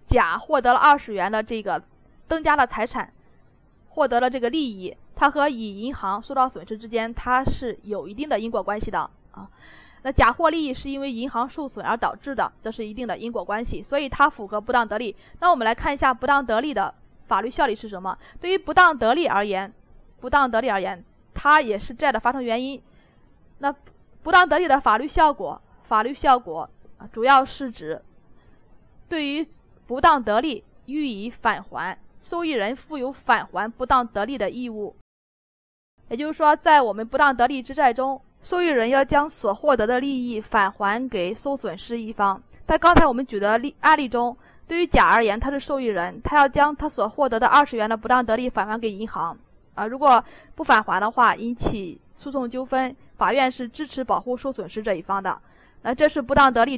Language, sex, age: Chinese, female, 20-39